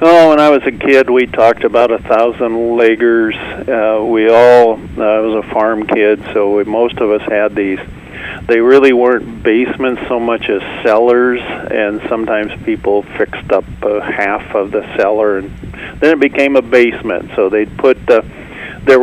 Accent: American